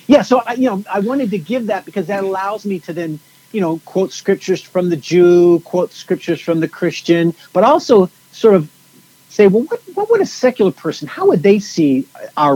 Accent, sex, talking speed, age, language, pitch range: American, male, 210 wpm, 50-69, English, 145-200 Hz